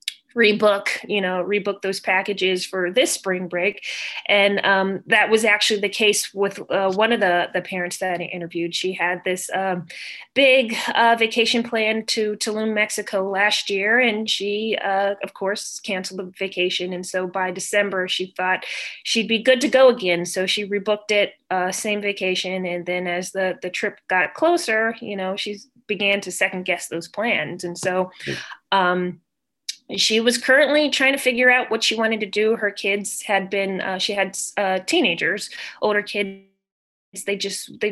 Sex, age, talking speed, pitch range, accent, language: female, 20-39, 180 wpm, 185-220 Hz, American, English